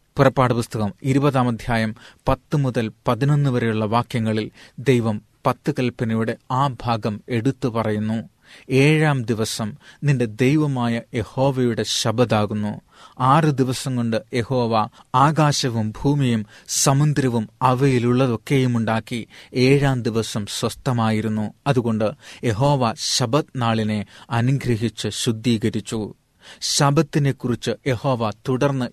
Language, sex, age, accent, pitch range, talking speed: Malayalam, male, 30-49, native, 110-135 Hz, 90 wpm